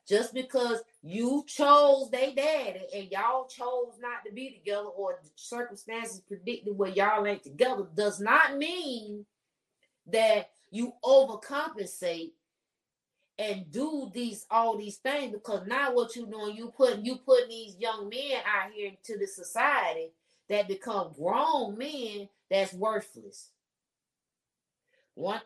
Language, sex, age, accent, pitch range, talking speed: English, female, 30-49, American, 200-285 Hz, 135 wpm